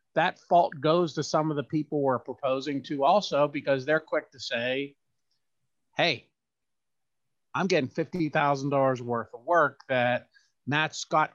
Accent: American